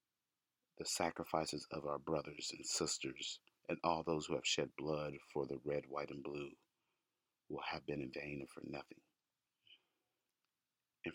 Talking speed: 155 wpm